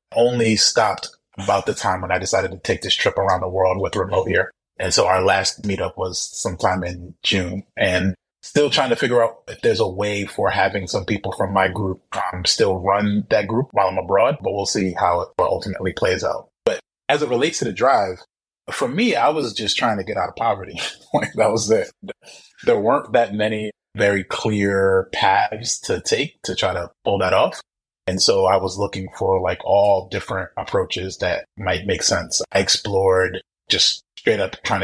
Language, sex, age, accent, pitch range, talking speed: English, male, 30-49, American, 95-110 Hz, 200 wpm